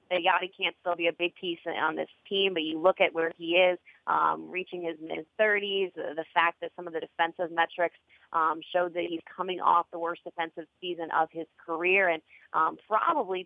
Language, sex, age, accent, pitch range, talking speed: English, female, 30-49, American, 165-195 Hz, 210 wpm